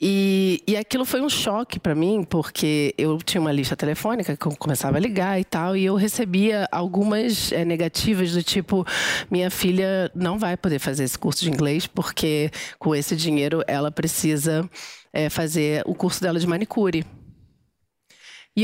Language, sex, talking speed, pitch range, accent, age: English, female, 170 wpm, 160-215 Hz, Brazilian, 40-59